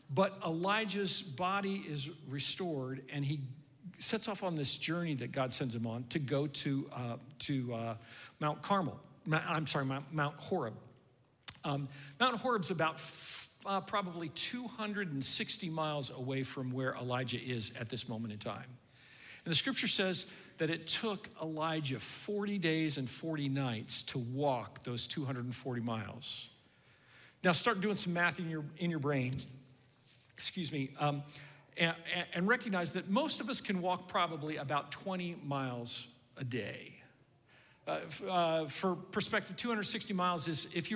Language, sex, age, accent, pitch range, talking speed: English, male, 50-69, American, 130-175 Hz, 150 wpm